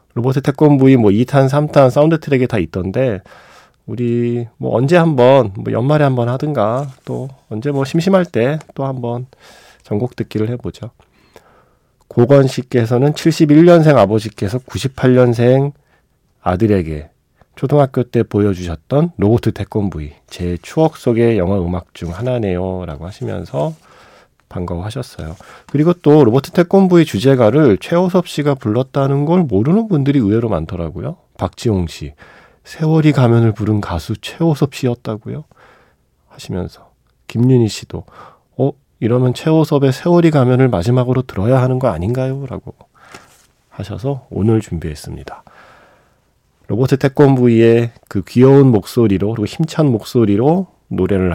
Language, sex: Korean, male